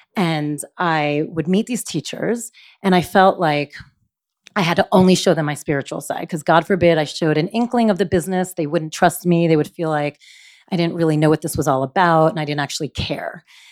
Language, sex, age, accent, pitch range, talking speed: English, female, 30-49, American, 160-220 Hz, 225 wpm